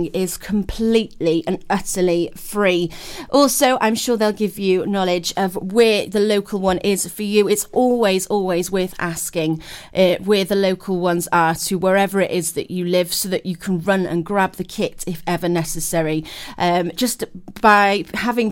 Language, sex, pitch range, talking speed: English, female, 185-225 Hz, 175 wpm